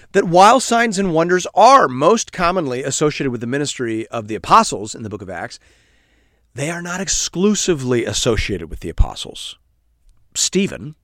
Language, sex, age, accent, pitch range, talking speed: English, male, 40-59, American, 135-205 Hz, 160 wpm